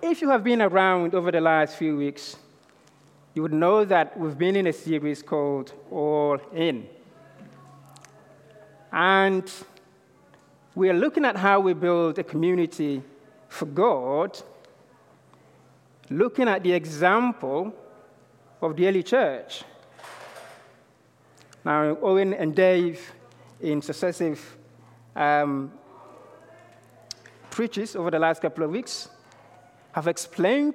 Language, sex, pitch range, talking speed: English, male, 150-195 Hz, 115 wpm